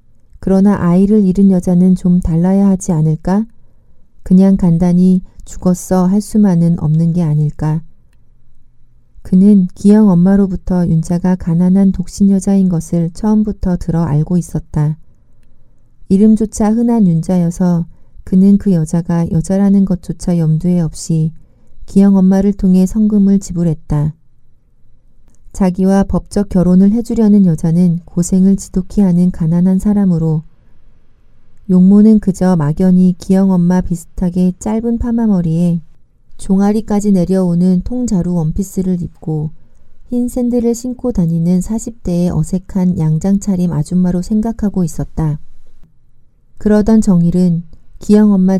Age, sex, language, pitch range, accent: 40-59, female, Korean, 170-195 Hz, native